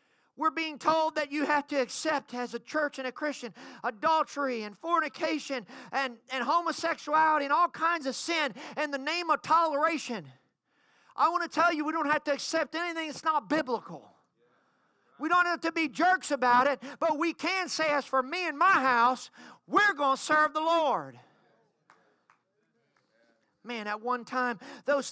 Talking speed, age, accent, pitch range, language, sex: 175 wpm, 40-59, American, 255-320 Hz, English, male